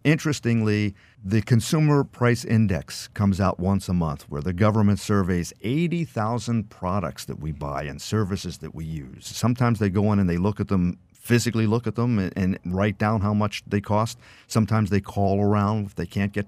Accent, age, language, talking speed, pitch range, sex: American, 50-69, English, 190 wpm, 95-115 Hz, male